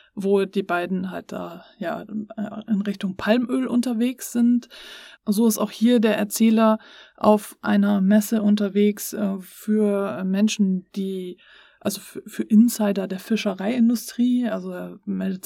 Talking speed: 130 wpm